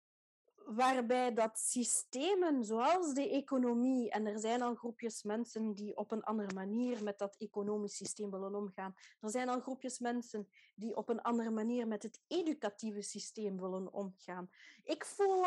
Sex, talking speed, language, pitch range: female, 160 wpm, Dutch, 200-260 Hz